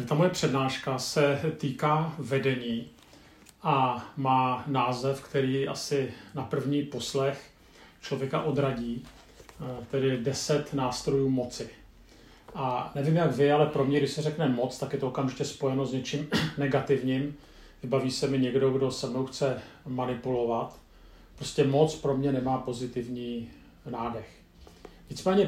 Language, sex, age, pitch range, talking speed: Czech, male, 40-59, 125-145 Hz, 130 wpm